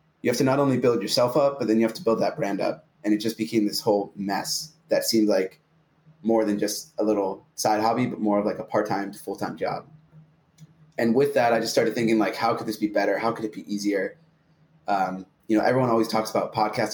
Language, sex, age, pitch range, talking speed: English, male, 20-39, 105-125 Hz, 245 wpm